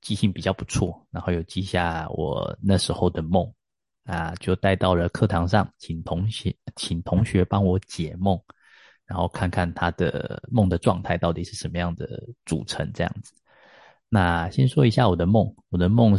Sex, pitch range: male, 85-100 Hz